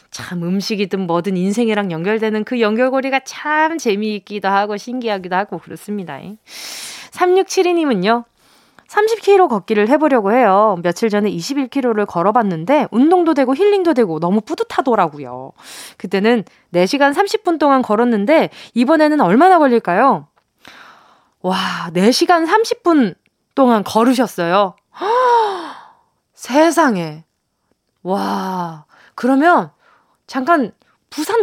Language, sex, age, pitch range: Korean, female, 20-39, 195-305 Hz